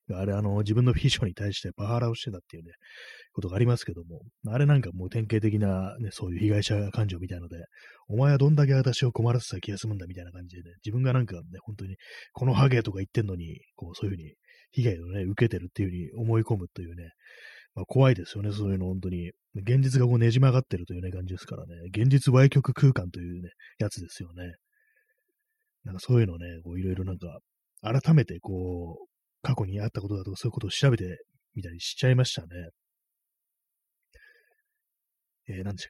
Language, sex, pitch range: Japanese, male, 90-130 Hz